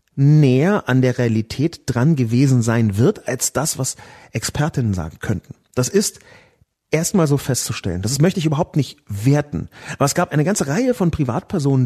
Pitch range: 120-165 Hz